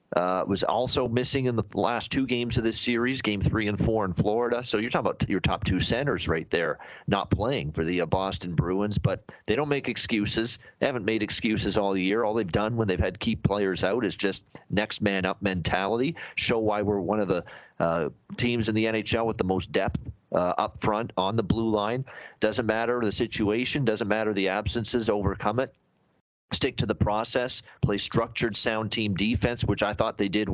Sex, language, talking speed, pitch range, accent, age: male, English, 205 wpm, 100-120 Hz, American, 40-59